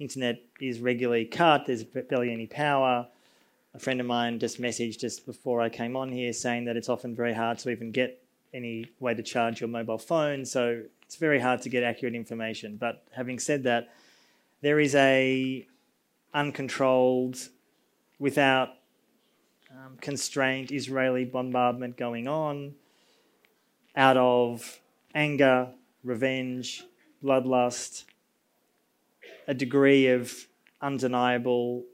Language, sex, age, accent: English, male, 30-49, Australian